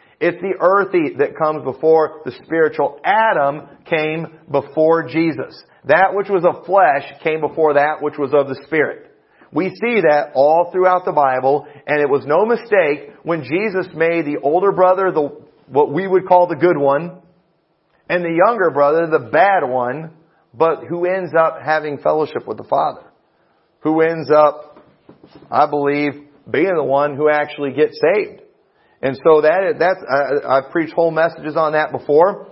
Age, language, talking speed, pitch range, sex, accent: 40-59, English, 165 wpm, 140-175 Hz, male, American